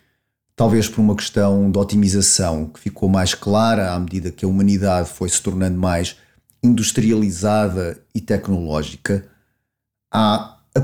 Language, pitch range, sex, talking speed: Portuguese, 100-120 Hz, male, 135 wpm